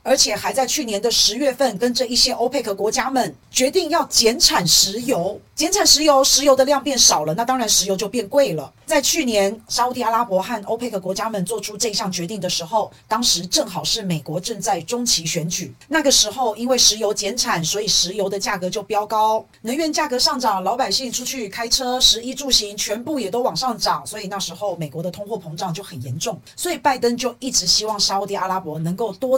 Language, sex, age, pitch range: Chinese, female, 40-59, 195-265 Hz